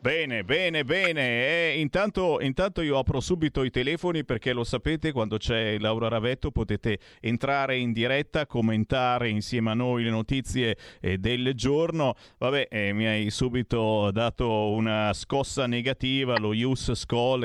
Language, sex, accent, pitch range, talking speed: Italian, male, native, 110-150 Hz, 150 wpm